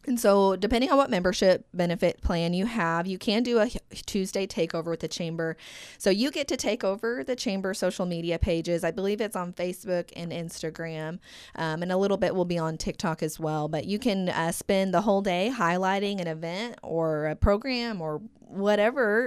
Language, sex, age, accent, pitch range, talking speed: English, female, 20-39, American, 170-210 Hz, 200 wpm